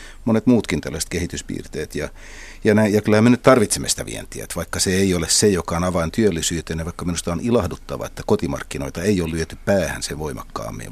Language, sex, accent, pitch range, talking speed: Finnish, male, native, 80-100 Hz, 205 wpm